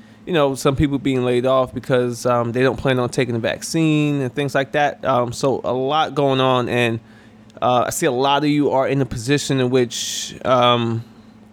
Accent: American